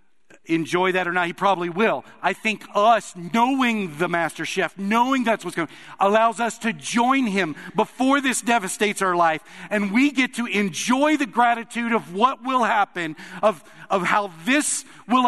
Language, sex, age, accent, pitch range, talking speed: English, male, 50-69, American, 155-235 Hz, 175 wpm